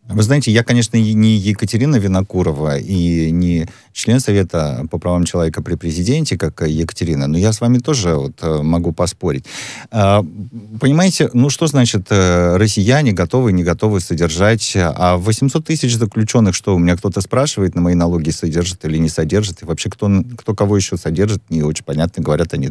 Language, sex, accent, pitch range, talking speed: Russian, male, native, 85-115 Hz, 165 wpm